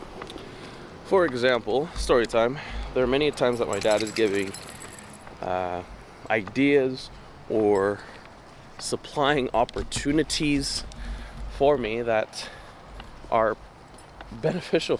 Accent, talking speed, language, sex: American, 90 wpm, English, male